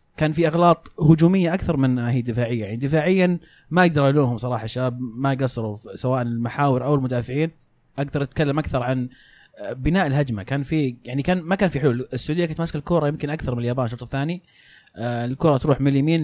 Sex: male